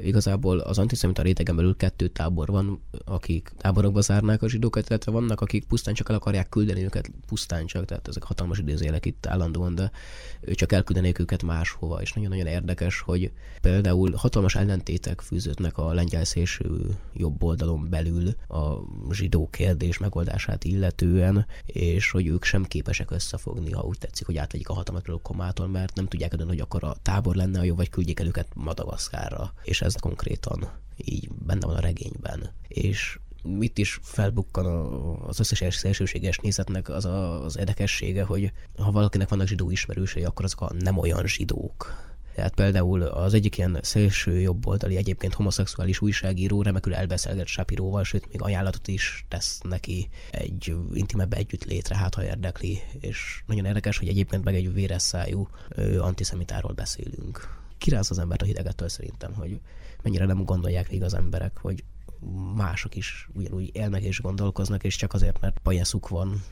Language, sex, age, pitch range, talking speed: Hungarian, male, 20-39, 90-100 Hz, 160 wpm